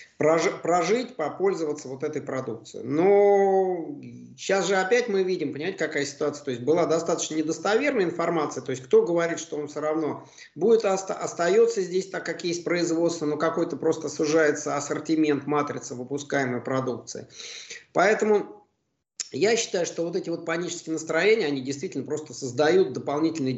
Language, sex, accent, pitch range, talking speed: Russian, male, native, 130-175 Hz, 145 wpm